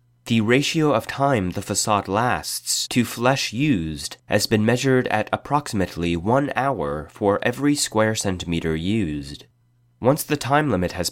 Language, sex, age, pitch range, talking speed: English, male, 30-49, 95-130 Hz, 145 wpm